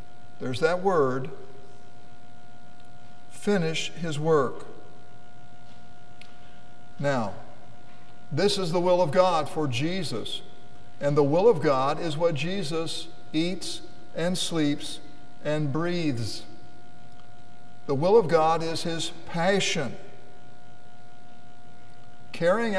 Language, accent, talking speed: English, American, 95 wpm